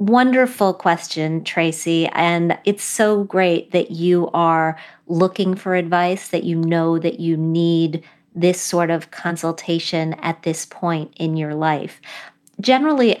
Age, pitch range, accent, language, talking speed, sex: 40-59, 165-195 Hz, American, English, 135 wpm, female